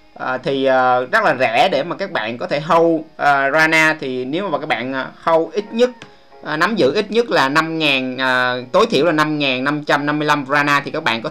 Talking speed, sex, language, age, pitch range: 185 wpm, male, Vietnamese, 20-39, 135-170 Hz